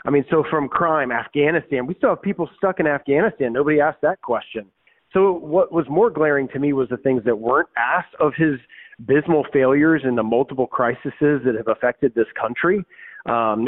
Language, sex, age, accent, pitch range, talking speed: English, male, 30-49, American, 115-140 Hz, 195 wpm